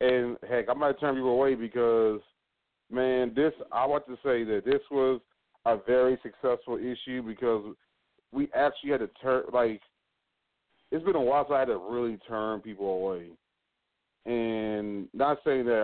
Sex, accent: male, American